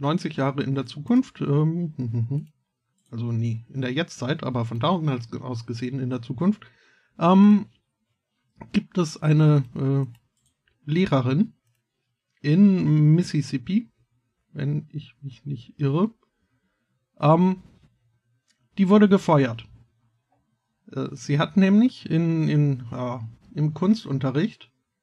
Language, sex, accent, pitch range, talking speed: German, male, German, 125-155 Hz, 110 wpm